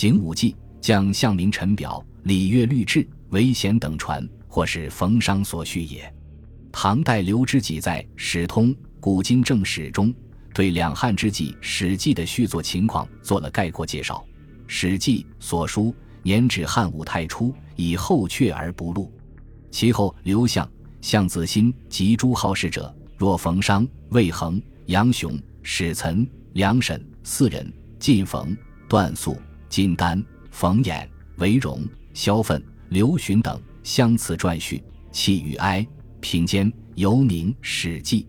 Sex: male